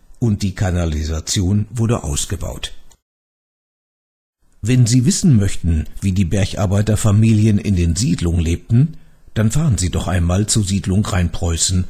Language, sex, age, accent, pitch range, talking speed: German, male, 60-79, German, 85-120 Hz, 120 wpm